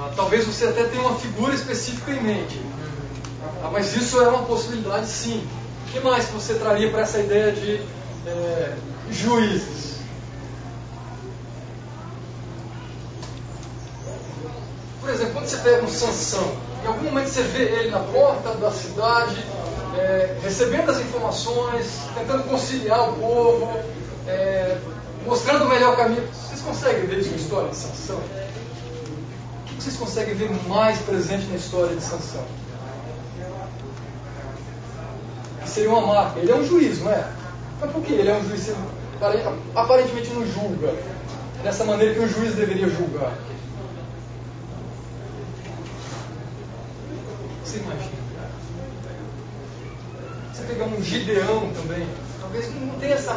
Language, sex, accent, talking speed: Portuguese, male, Brazilian, 120 wpm